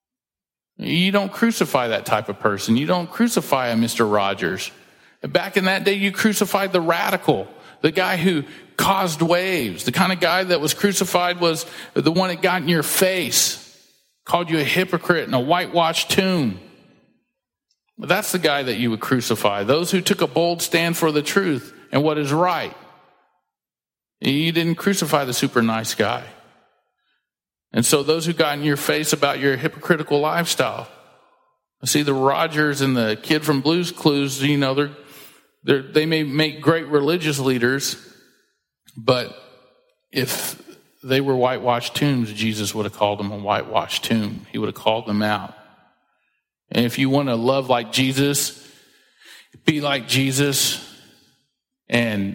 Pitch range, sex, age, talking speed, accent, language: 120-170 Hz, male, 50-69, 160 wpm, American, English